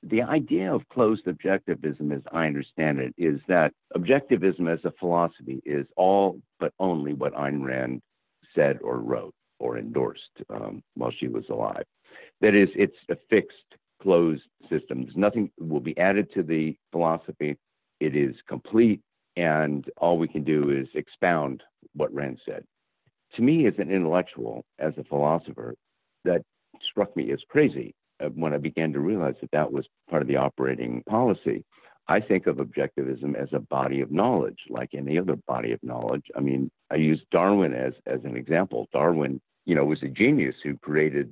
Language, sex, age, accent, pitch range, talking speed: English, male, 50-69, American, 70-85 Hz, 170 wpm